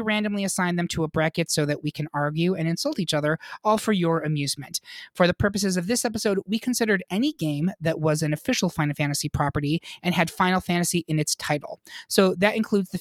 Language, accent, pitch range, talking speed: English, American, 155-200 Hz, 215 wpm